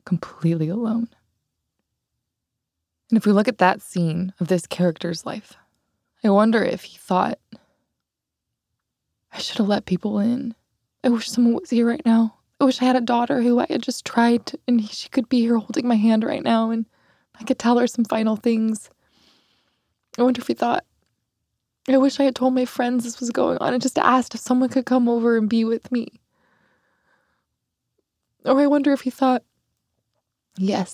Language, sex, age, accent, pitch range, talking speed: English, female, 20-39, American, 185-245 Hz, 185 wpm